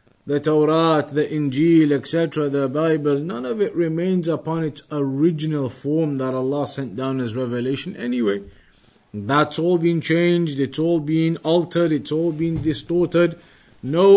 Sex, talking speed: male, 150 wpm